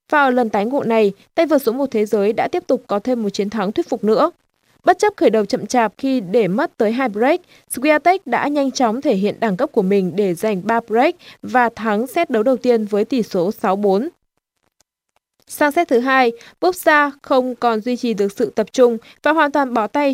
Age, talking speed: 20-39, 230 wpm